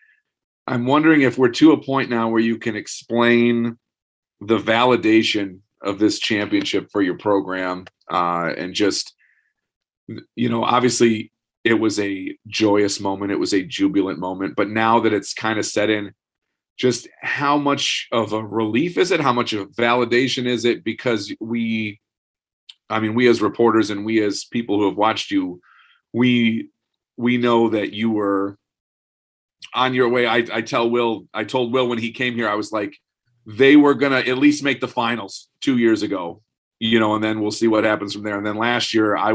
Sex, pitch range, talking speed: male, 105-125 Hz, 190 wpm